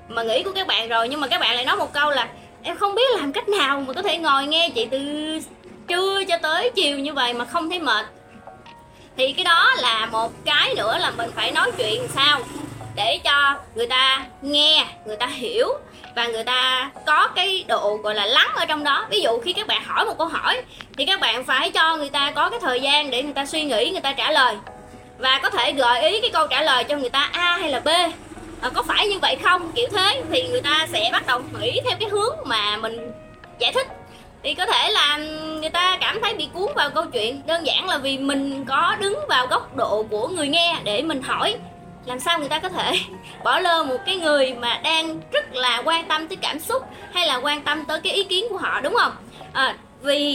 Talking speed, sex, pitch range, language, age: 235 wpm, female, 265-365 Hz, Vietnamese, 20-39